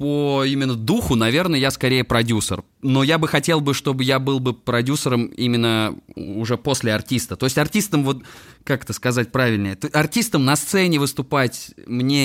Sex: male